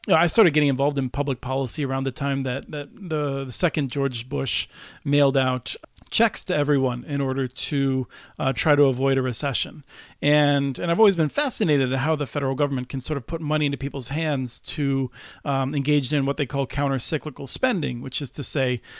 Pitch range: 135-150 Hz